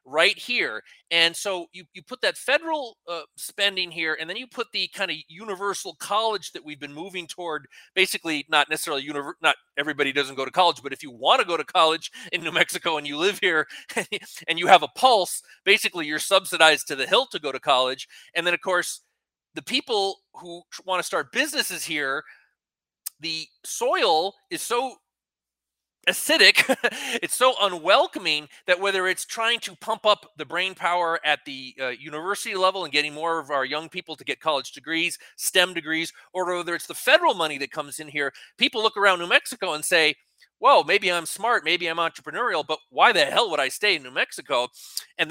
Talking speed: 195 wpm